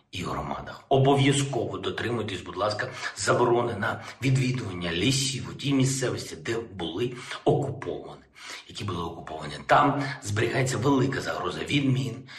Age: 50-69